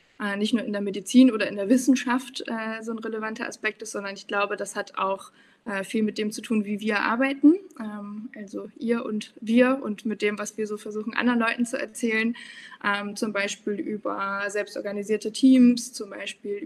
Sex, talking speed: female, 180 wpm